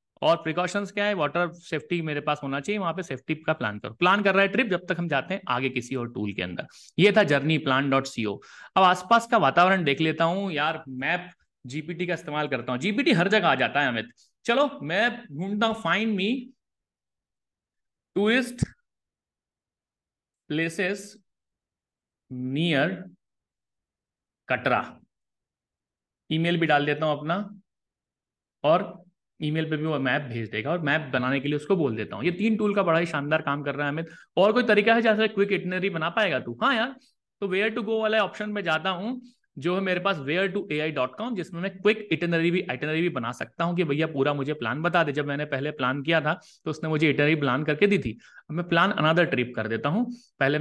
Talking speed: 180 wpm